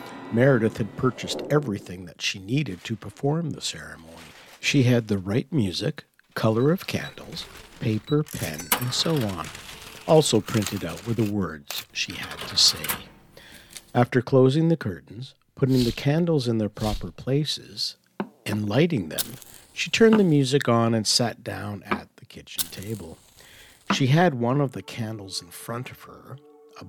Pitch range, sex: 105-145 Hz, male